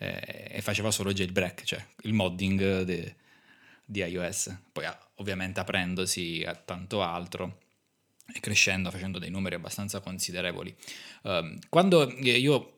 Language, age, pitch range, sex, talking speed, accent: Italian, 20-39, 100-125 Hz, male, 115 wpm, native